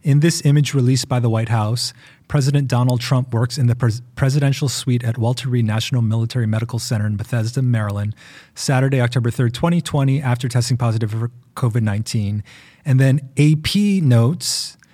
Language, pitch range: English, 120-150 Hz